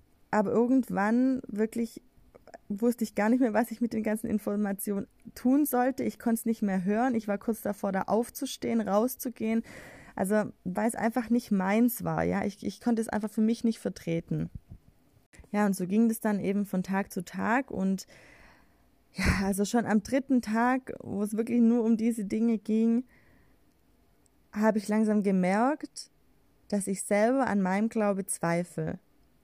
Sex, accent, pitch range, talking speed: female, German, 195-230 Hz, 170 wpm